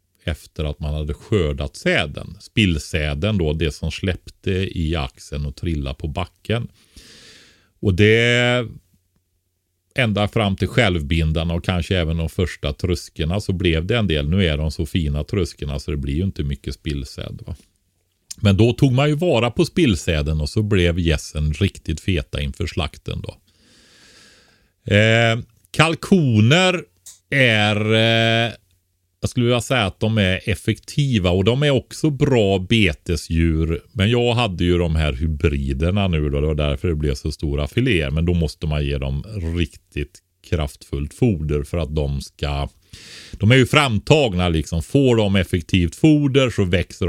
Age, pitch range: 40-59, 75-110 Hz